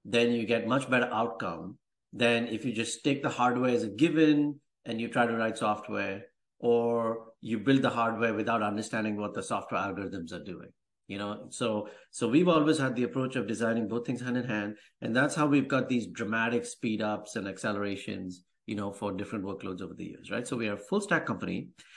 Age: 50-69